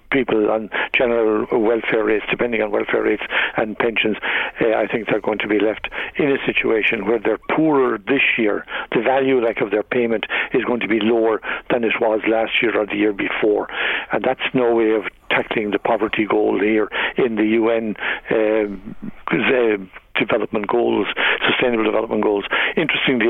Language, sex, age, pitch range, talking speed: English, male, 60-79, 110-125 Hz, 175 wpm